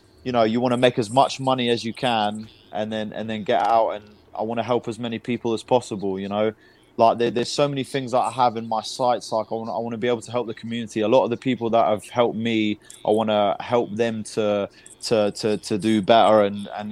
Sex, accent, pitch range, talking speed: male, British, 105-120 Hz, 270 wpm